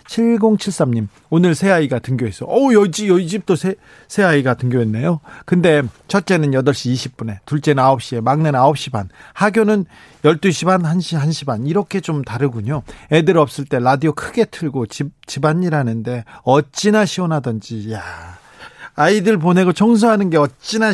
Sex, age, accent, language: male, 40-59, native, Korean